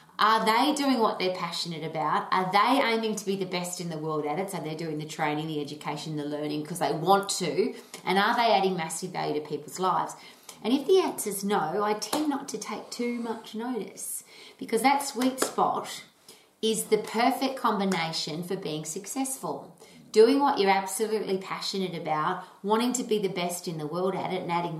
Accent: Australian